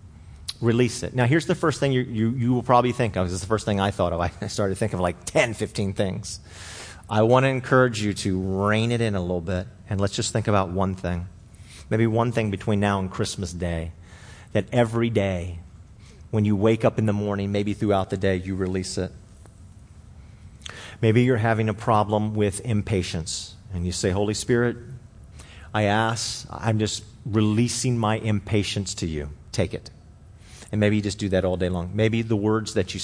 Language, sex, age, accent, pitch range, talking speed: English, male, 40-59, American, 95-115 Hz, 200 wpm